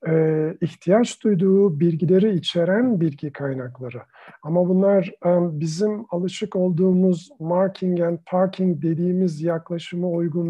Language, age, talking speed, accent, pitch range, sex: Turkish, 50-69, 95 wpm, native, 165-190 Hz, male